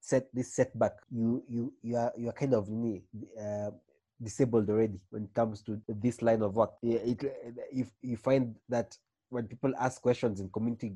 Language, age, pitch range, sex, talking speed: English, 30-49, 105-125 Hz, male, 180 wpm